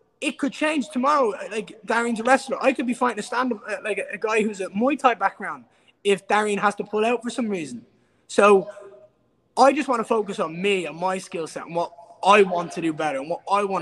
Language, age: English, 20-39